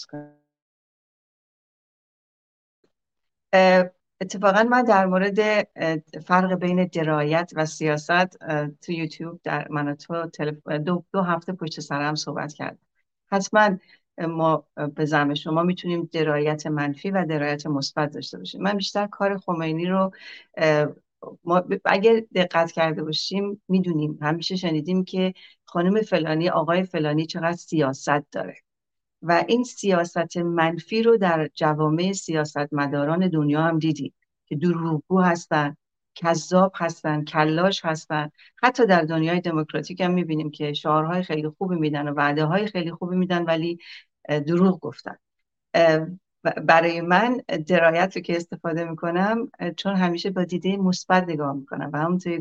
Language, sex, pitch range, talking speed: Persian, female, 155-185 Hz, 130 wpm